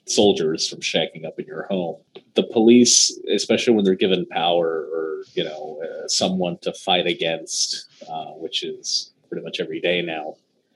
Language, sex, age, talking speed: English, male, 30-49, 165 wpm